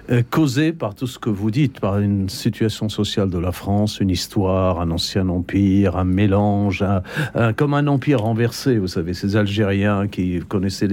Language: French